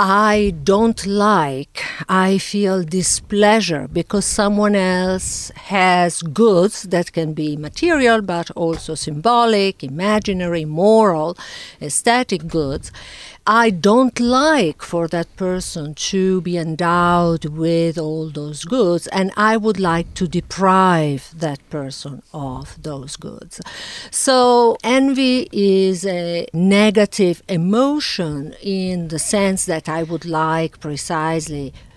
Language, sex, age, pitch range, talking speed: English, female, 50-69, 160-215 Hz, 115 wpm